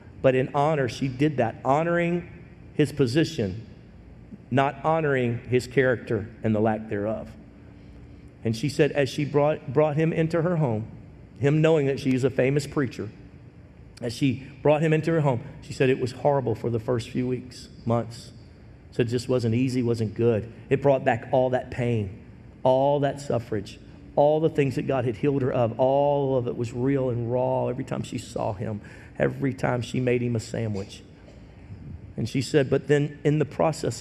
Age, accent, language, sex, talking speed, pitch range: 50-69, American, English, male, 185 wpm, 115-140 Hz